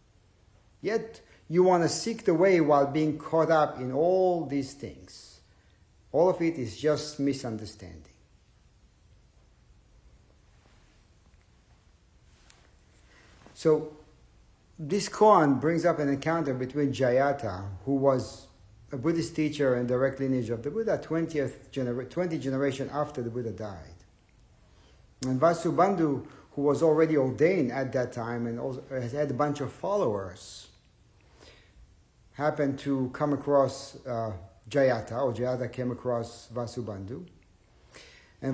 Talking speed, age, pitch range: 125 wpm, 50-69, 115-155 Hz